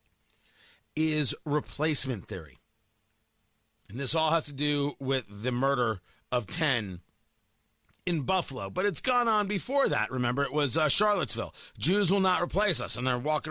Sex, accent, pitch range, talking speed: male, American, 110-175 Hz, 155 wpm